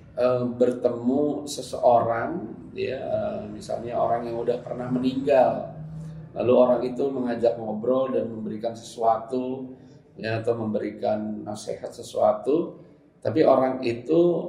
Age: 40-59